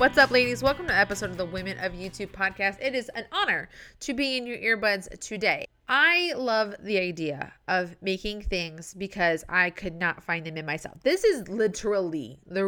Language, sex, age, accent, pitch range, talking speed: English, female, 20-39, American, 180-235 Hz, 200 wpm